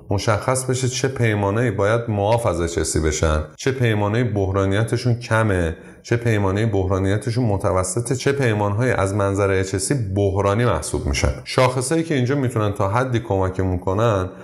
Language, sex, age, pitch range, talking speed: Persian, male, 30-49, 95-125 Hz, 135 wpm